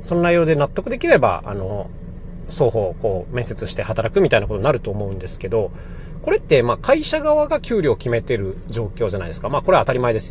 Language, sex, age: Japanese, male, 30-49